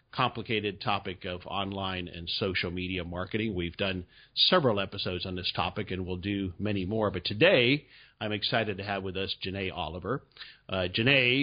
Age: 50-69